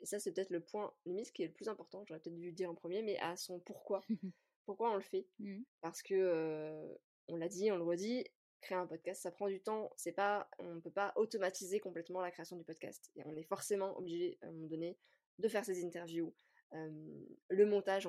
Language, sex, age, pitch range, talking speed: French, female, 20-39, 170-205 Hz, 230 wpm